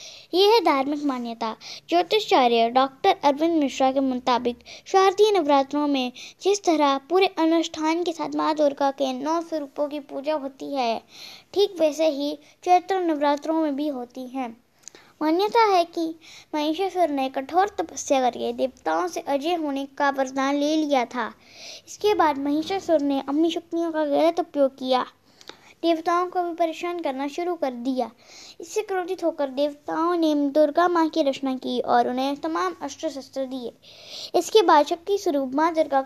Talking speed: 155 wpm